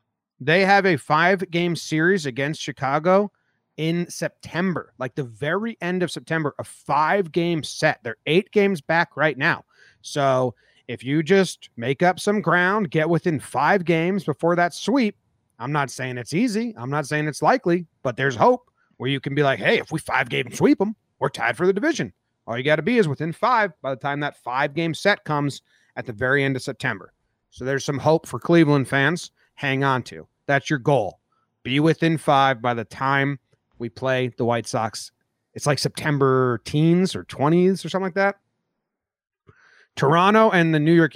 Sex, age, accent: male, 30-49, American